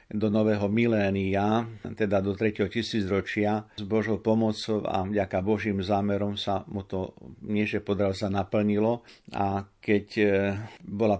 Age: 50-69